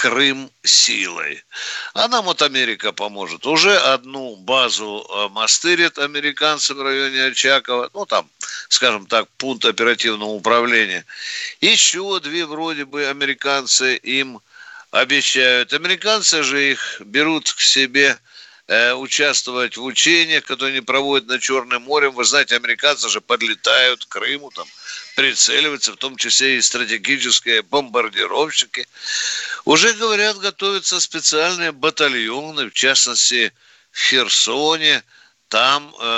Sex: male